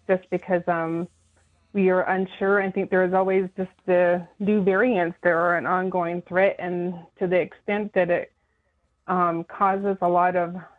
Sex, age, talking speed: female, 30-49, 170 wpm